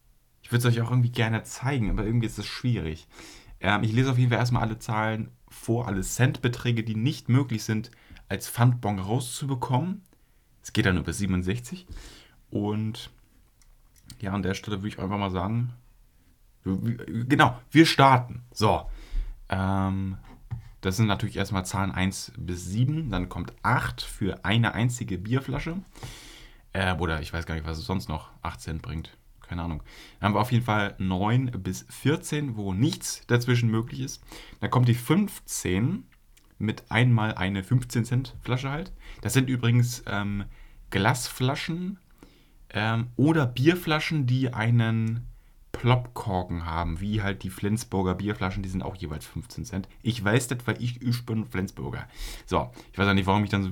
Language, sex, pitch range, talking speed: German, male, 95-125 Hz, 160 wpm